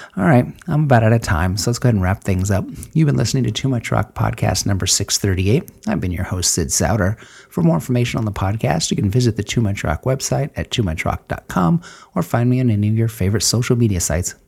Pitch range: 100-125 Hz